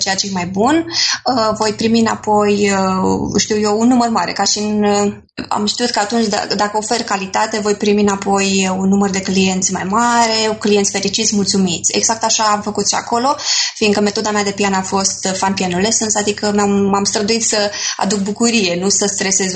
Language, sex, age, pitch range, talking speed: Romanian, female, 20-39, 195-225 Hz, 200 wpm